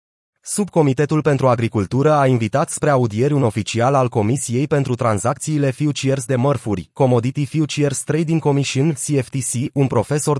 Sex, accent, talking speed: male, native, 135 wpm